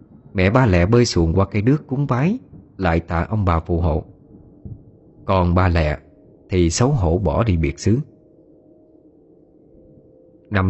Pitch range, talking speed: 85-135 Hz, 150 wpm